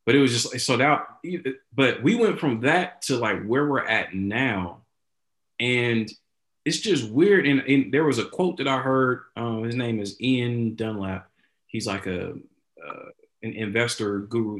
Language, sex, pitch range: English, male, 105-135 Hz